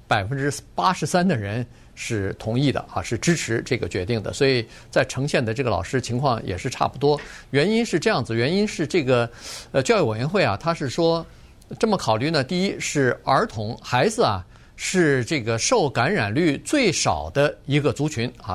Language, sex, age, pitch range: Chinese, male, 50-69, 115-160 Hz